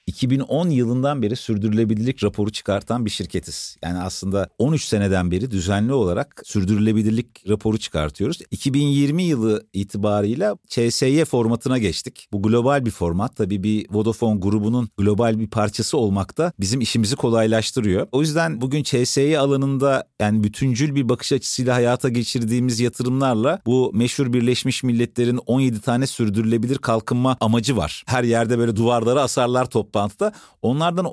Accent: native